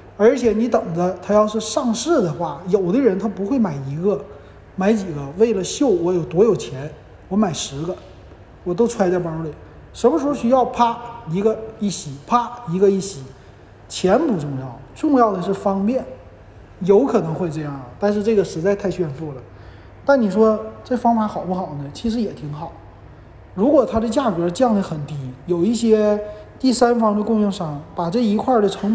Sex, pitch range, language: male, 150-220 Hz, Chinese